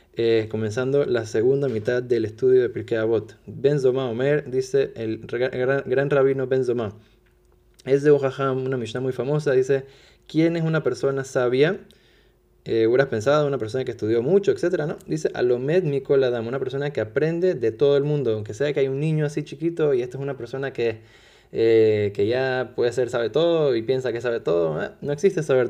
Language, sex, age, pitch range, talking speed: Spanish, male, 20-39, 120-155 Hz, 200 wpm